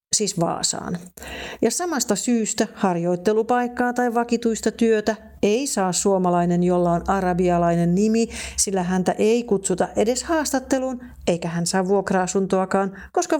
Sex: female